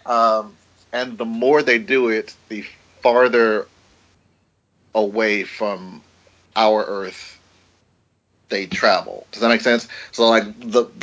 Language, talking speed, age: English, 120 wpm, 40-59